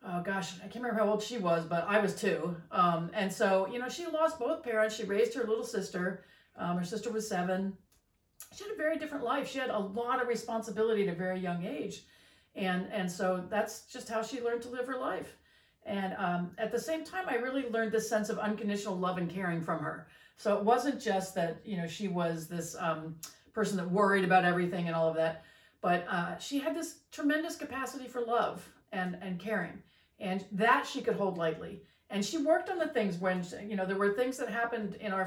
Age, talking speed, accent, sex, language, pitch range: 40-59, 225 wpm, American, female, English, 185-250 Hz